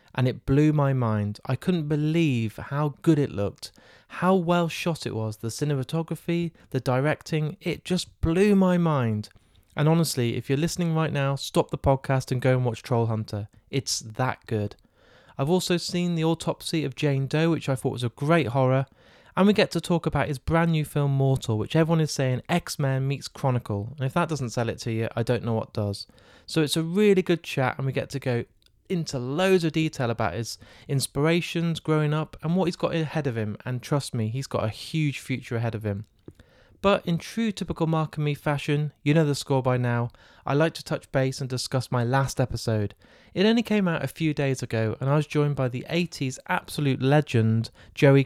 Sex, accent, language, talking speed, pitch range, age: male, British, English, 215 wpm, 120-160 Hz, 20-39